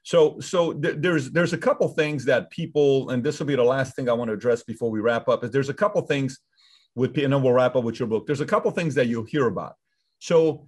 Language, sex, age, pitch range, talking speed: English, male, 30-49, 135-170 Hz, 270 wpm